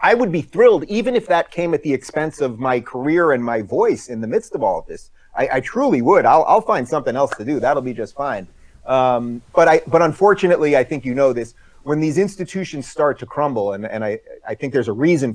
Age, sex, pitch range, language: 30-49, male, 125-170 Hz, English